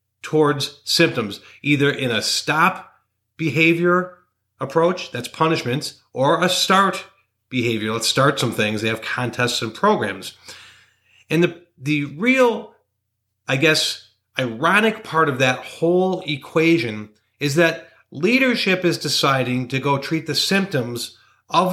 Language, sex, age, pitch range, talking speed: English, male, 40-59, 115-155 Hz, 125 wpm